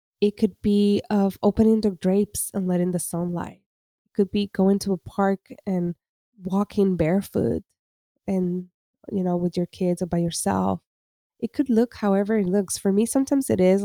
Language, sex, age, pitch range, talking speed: English, female, 20-39, 175-205 Hz, 180 wpm